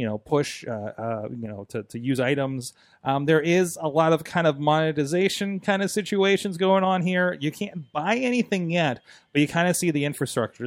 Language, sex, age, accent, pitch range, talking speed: English, male, 30-49, American, 130-170 Hz, 215 wpm